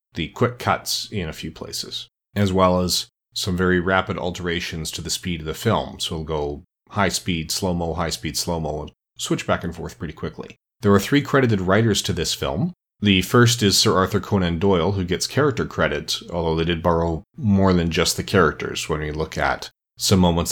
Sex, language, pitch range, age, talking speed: male, English, 85-105 Hz, 40-59, 210 wpm